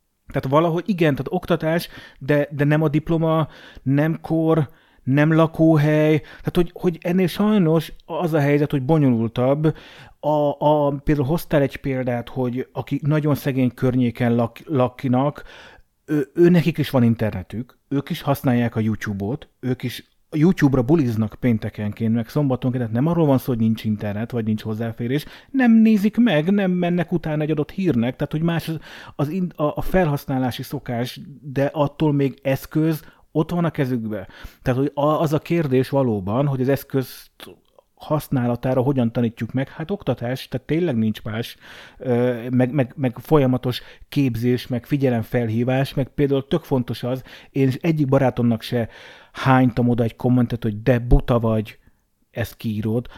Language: Hungarian